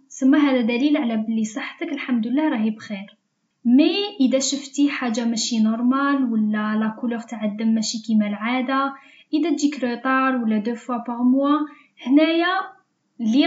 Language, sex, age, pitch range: Arabic, female, 10-29, 220-270 Hz